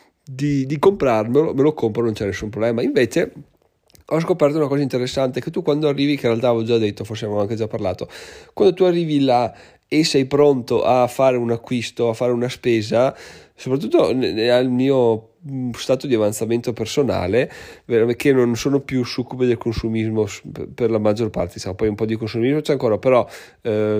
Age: 30-49